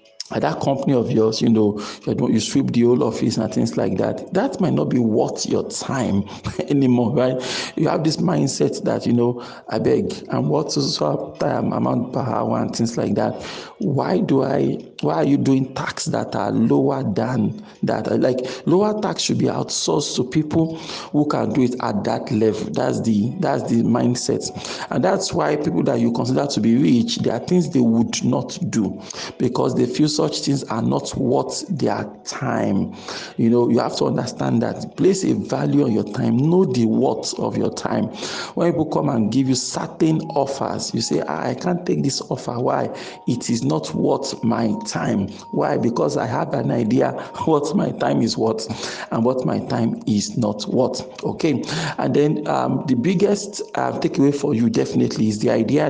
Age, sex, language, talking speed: 50-69, male, English, 195 wpm